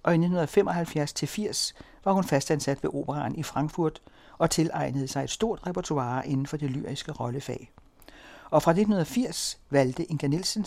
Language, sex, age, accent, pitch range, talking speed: Danish, male, 60-79, native, 135-175 Hz, 150 wpm